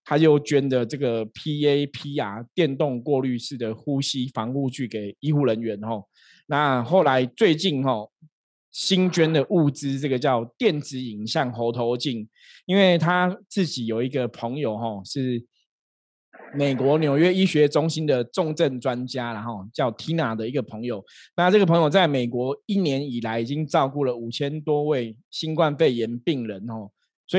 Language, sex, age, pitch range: Chinese, male, 20-39, 120-155 Hz